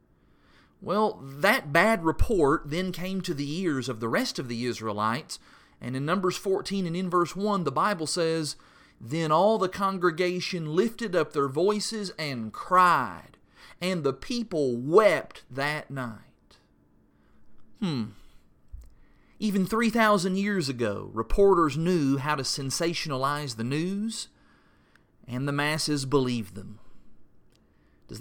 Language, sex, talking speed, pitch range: English, male, 130 wpm, 130-185 Hz